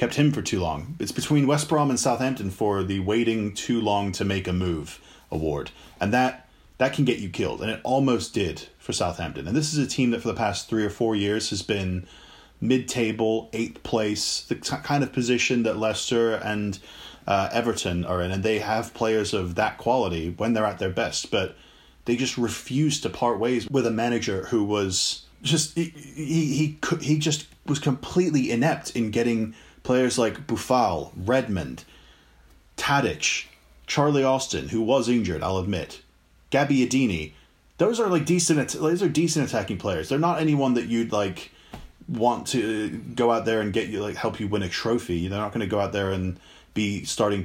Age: 30-49